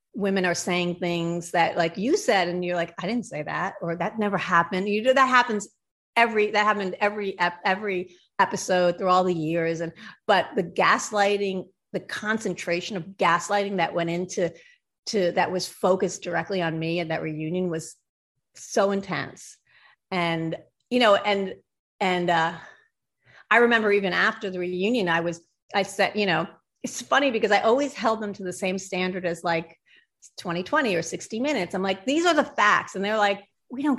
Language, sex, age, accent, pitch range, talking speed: English, female, 30-49, American, 175-220 Hz, 185 wpm